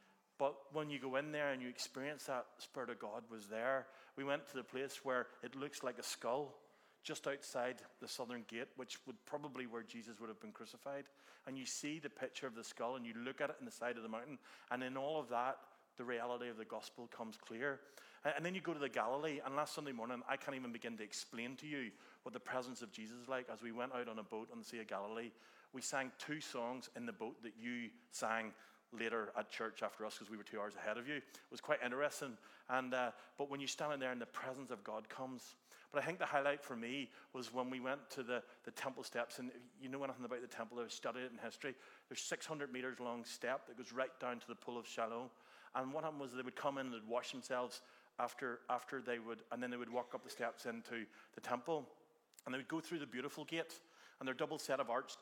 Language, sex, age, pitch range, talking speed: English, male, 30-49, 120-140 Hz, 255 wpm